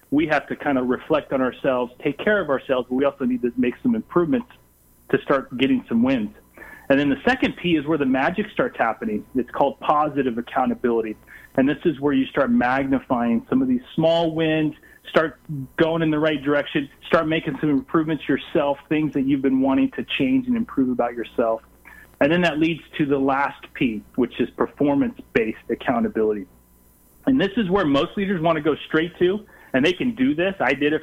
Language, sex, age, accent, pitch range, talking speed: English, male, 30-49, American, 125-165 Hz, 205 wpm